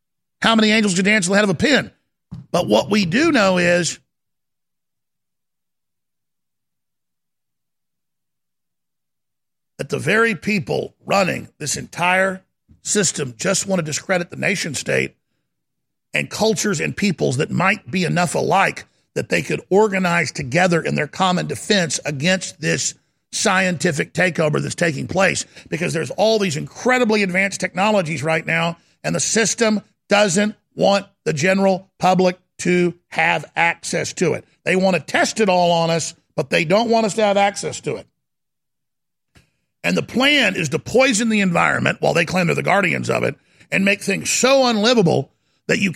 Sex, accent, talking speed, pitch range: male, American, 155 wpm, 170-210 Hz